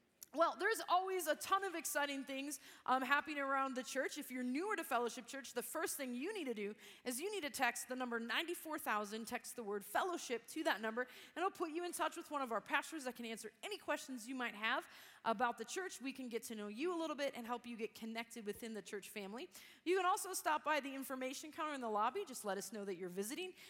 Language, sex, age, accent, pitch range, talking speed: English, female, 30-49, American, 235-300 Hz, 250 wpm